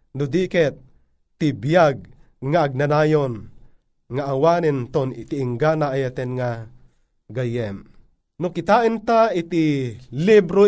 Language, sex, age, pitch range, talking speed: Filipino, male, 30-49, 130-175 Hz, 95 wpm